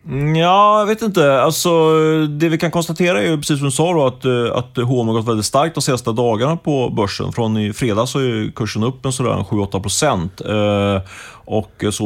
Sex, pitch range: male, 100-130 Hz